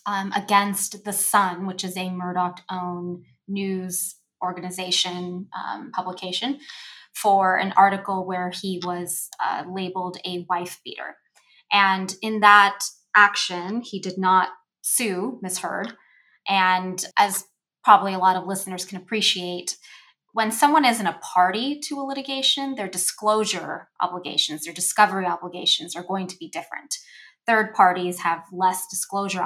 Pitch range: 180-215 Hz